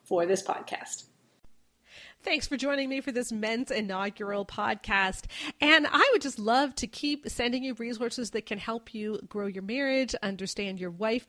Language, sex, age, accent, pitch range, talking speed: English, female, 40-59, American, 205-250 Hz, 170 wpm